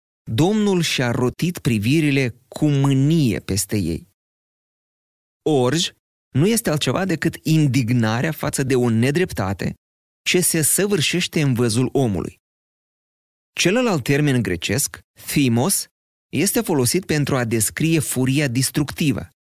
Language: Romanian